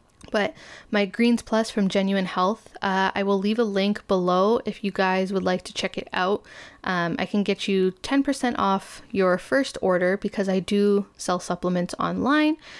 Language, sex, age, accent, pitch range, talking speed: English, female, 10-29, American, 185-230 Hz, 185 wpm